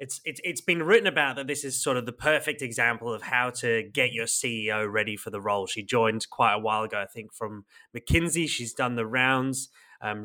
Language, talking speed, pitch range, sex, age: English, 230 wpm, 110-125 Hz, male, 20-39